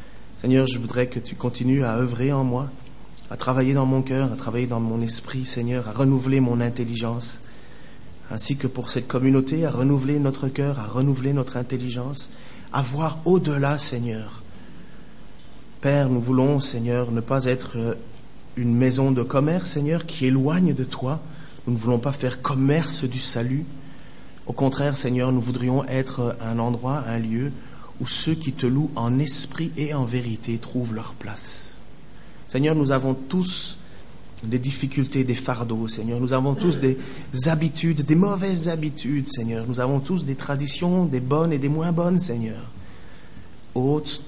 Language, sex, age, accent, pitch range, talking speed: French, male, 30-49, French, 120-145 Hz, 165 wpm